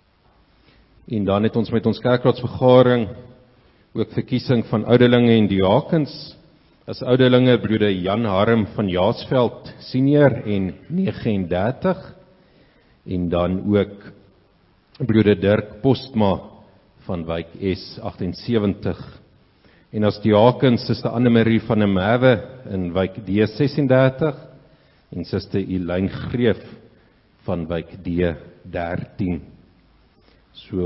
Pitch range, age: 90-125 Hz, 50-69